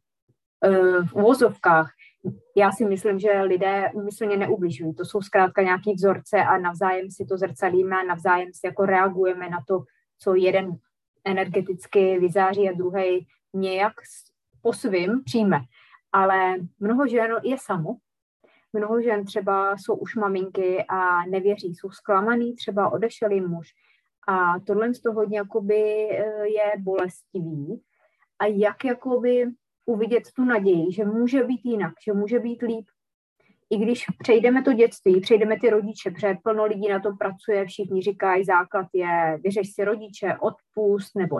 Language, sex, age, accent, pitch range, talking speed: Czech, female, 20-39, native, 185-215 Hz, 140 wpm